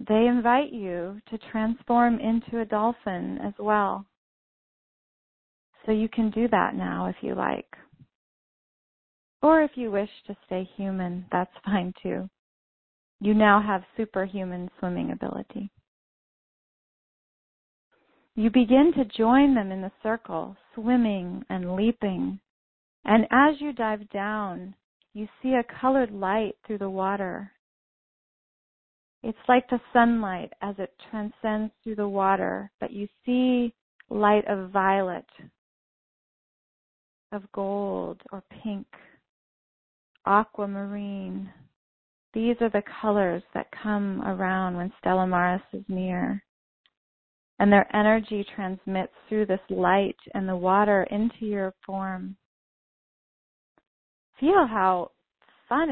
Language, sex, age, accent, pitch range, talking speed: English, female, 30-49, American, 190-225 Hz, 115 wpm